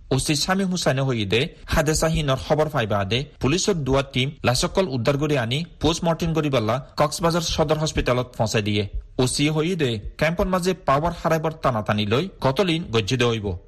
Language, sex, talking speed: Bengali, male, 140 wpm